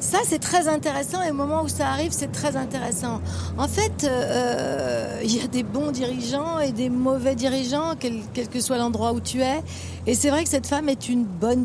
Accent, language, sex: French, French, female